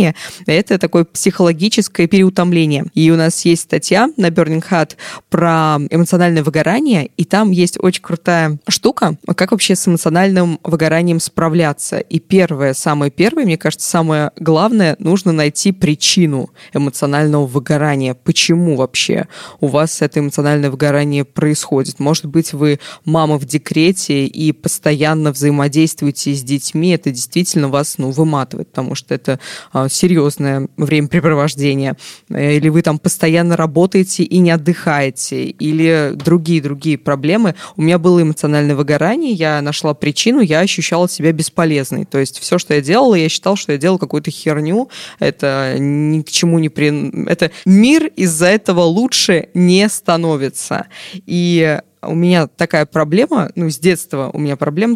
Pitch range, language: 150-180 Hz, Russian